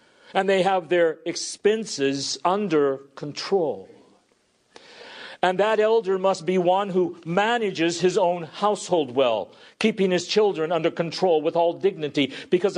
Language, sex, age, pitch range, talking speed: English, male, 50-69, 135-200 Hz, 130 wpm